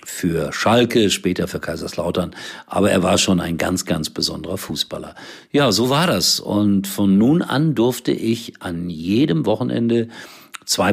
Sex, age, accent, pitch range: male, 50-69, German, 90-110 Hz